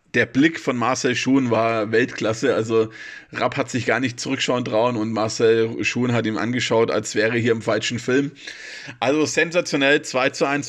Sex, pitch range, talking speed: male, 120-140 Hz, 180 wpm